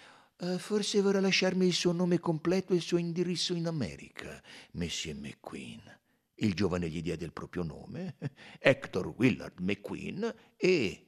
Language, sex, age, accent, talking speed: Italian, male, 60-79, native, 140 wpm